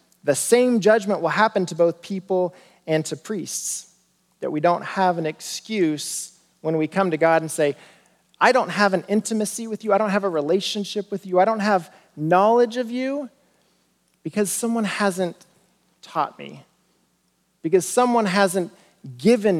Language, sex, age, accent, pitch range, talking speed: English, male, 40-59, American, 160-210 Hz, 160 wpm